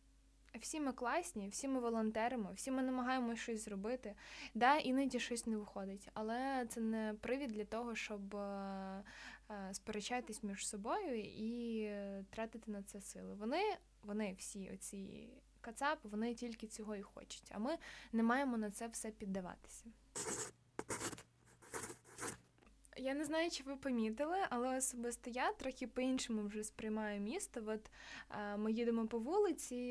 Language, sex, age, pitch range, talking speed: Ukrainian, female, 20-39, 210-255 Hz, 135 wpm